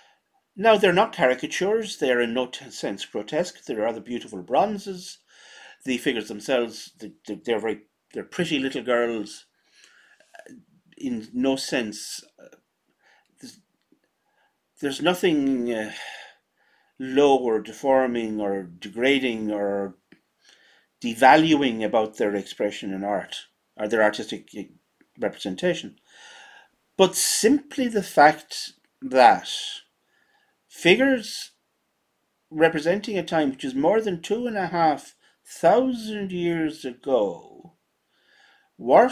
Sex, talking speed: male, 100 wpm